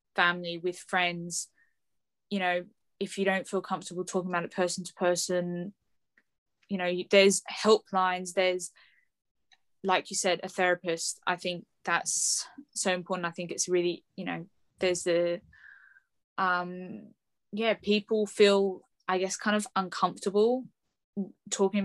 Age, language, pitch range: 10-29, English, 175-195 Hz